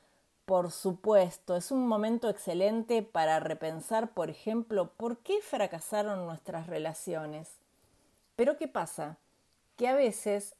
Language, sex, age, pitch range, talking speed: Spanish, female, 30-49, 160-215 Hz, 120 wpm